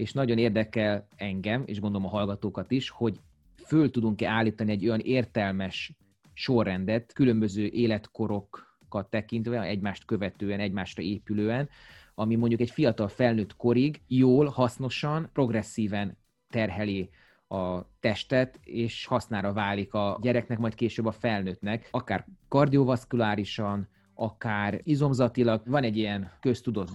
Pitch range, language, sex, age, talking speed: 100-125 Hz, Hungarian, male, 30-49, 120 wpm